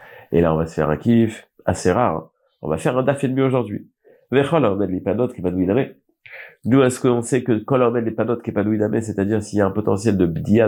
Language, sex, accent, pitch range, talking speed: French, male, French, 105-135 Hz, 275 wpm